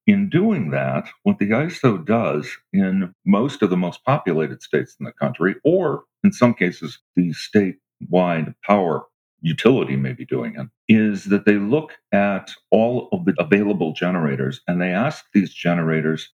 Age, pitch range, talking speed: 50-69, 85-120 Hz, 160 wpm